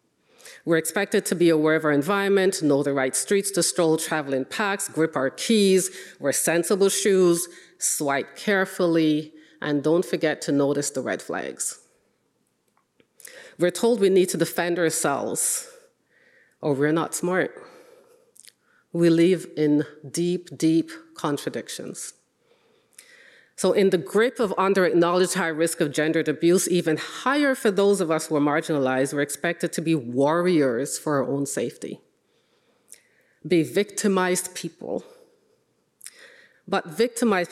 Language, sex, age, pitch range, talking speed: English, female, 40-59, 155-195 Hz, 135 wpm